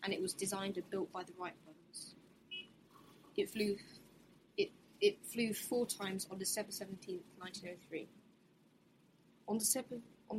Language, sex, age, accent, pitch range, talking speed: English, female, 10-29, British, 185-205 Hz, 145 wpm